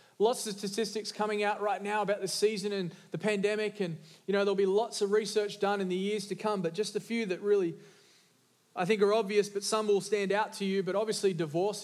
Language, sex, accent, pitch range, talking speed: English, male, Australian, 185-215 Hz, 240 wpm